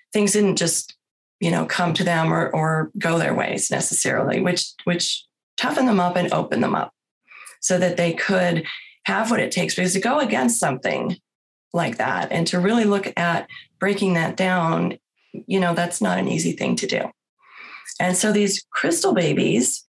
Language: English